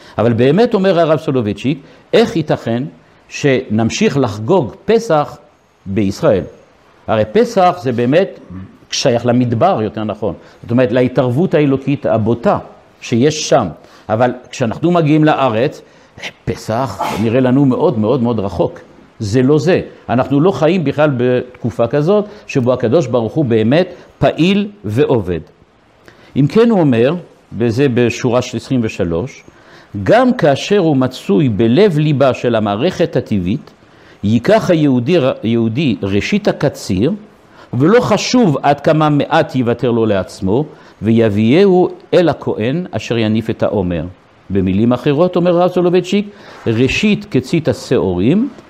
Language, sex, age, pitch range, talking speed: Hebrew, male, 60-79, 115-165 Hz, 120 wpm